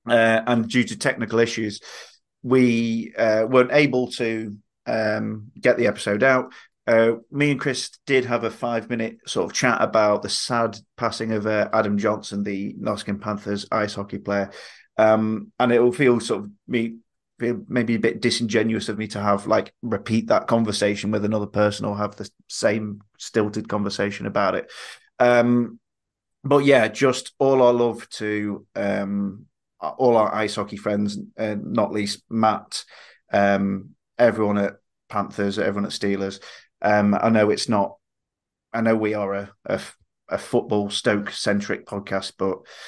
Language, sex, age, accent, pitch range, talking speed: English, male, 30-49, British, 105-120 Hz, 160 wpm